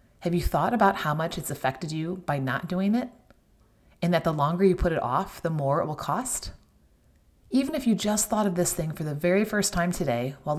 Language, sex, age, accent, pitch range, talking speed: English, female, 30-49, American, 130-195 Hz, 230 wpm